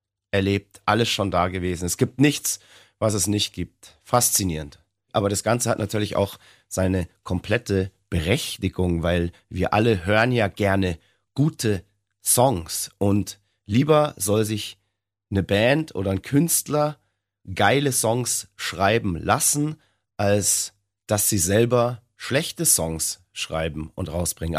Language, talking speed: German, 125 wpm